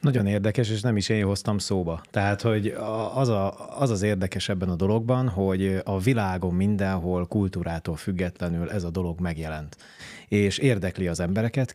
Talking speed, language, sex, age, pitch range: 165 wpm, Hungarian, male, 30-49, 85-105 Hz